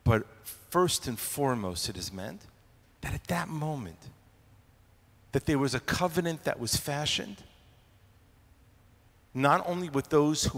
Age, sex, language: 40-59, male, English